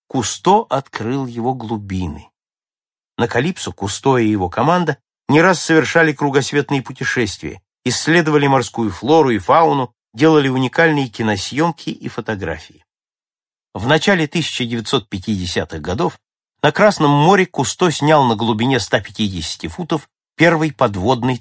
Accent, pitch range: native, 105-145 Hz